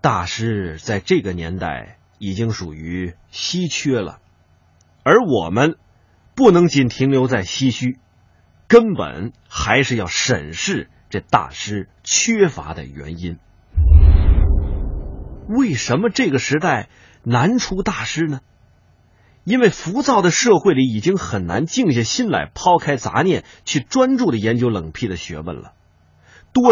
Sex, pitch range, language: male, 90-145 Hz, Chinese